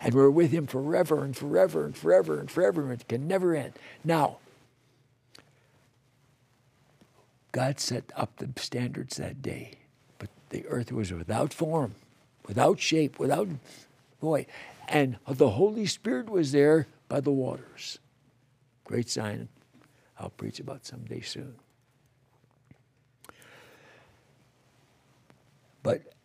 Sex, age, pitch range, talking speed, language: male, 60-79, 125-150 Hz, 115 wpm, English